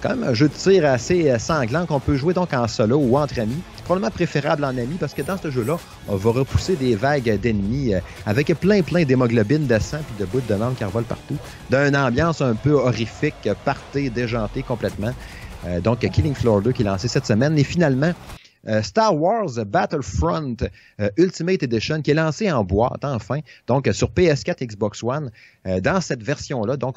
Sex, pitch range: male, 110-145 Hz